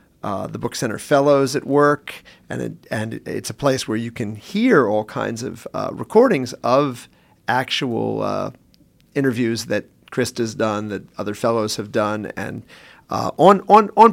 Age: 40-59